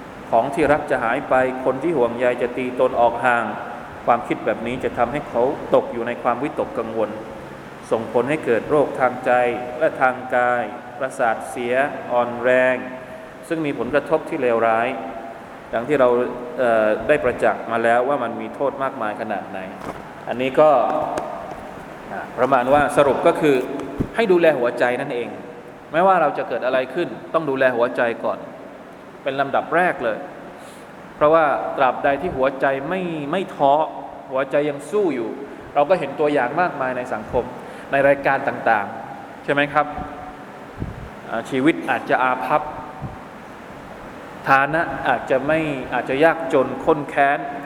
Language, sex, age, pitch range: Thai, male, 20-39, 125-145 Hz